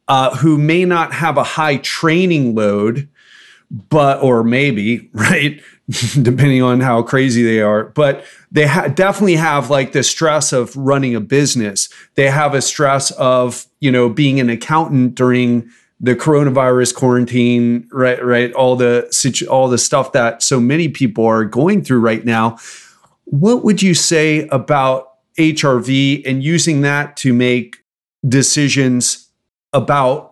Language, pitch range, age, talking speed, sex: English, 125-155 Hz, 30-49, 145 wpm, male